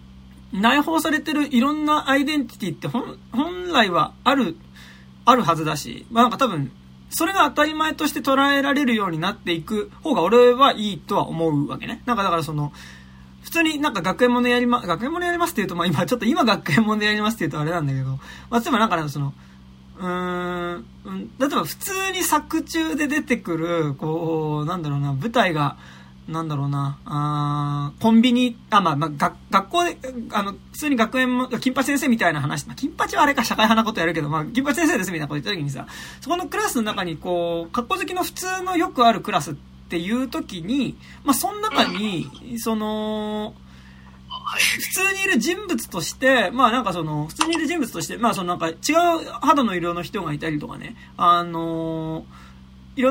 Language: Japanese